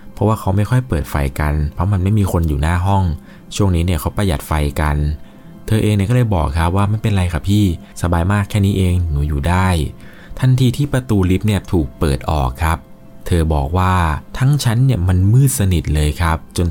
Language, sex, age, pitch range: Thai, male, 20-39, 75-105 Hz